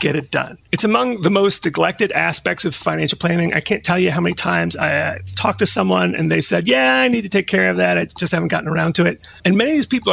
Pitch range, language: 125-170 Hz, English